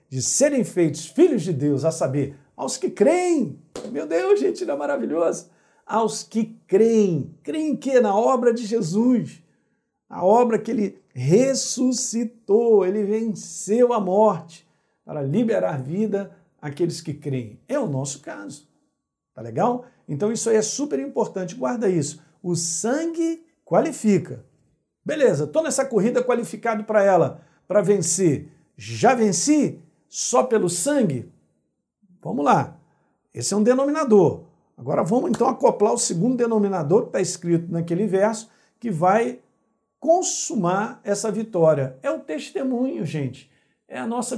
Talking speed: 140 wpm